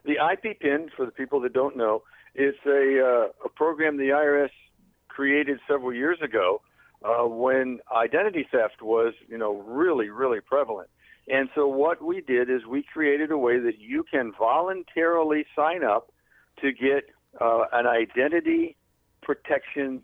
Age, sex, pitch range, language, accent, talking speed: 60-79, male, 125-165 Hz, English, American, 155 wpm